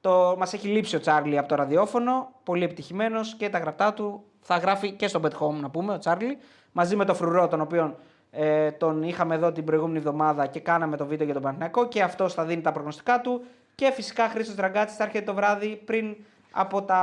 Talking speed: 215 wpm